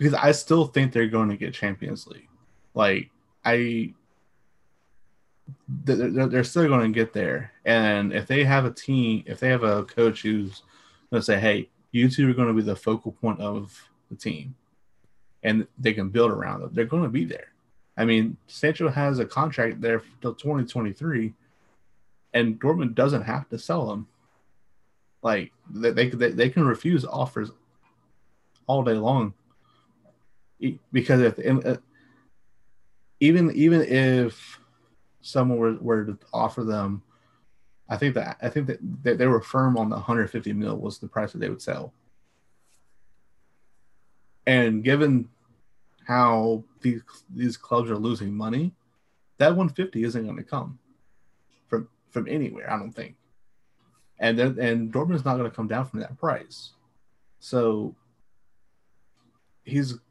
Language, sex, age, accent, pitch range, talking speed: English, male, 30-49, American, 110-130 Hz, 150 wpm